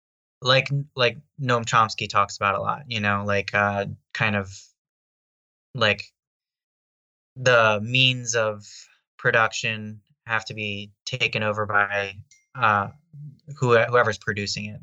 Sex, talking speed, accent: male, 115 wpm, American